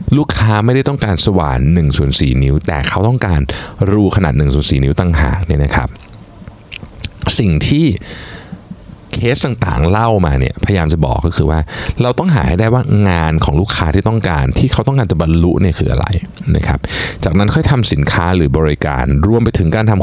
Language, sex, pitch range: Thai, male, 80-110 Hz